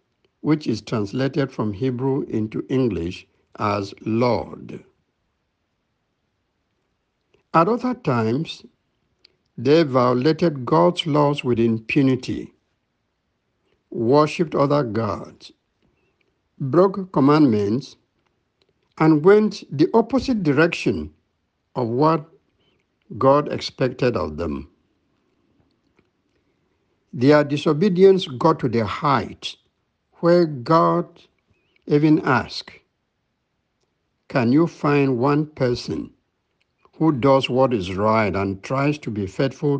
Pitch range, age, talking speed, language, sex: 115-160 Hz, 60-79, 90 wpm, English, male